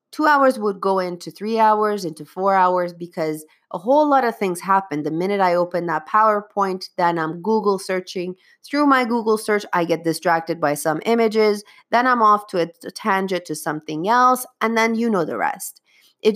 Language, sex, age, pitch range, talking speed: English, female, 30-49, 170-235 Hz, 195 wpm